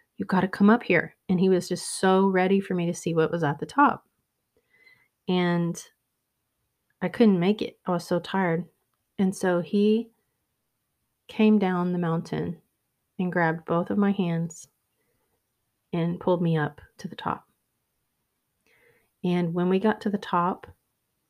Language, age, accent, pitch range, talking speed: English, 30-49, American, 165-195 Hz, 160 wpm